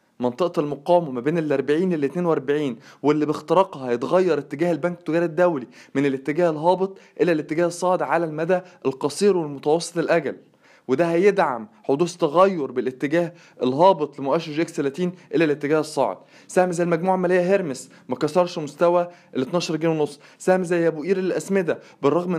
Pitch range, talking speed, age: 150-185 Hz, 140 wpm, 20-39